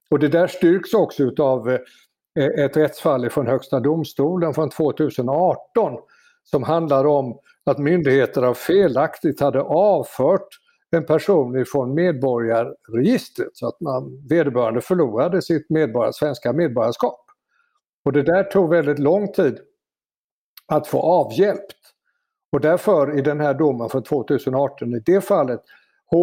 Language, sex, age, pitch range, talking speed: Swedish, male, 60-79, 130-160 Hz, 125 wpm